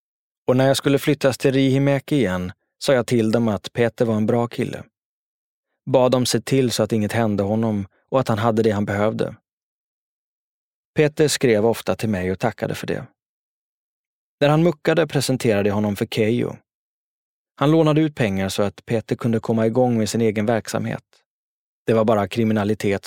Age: 20-39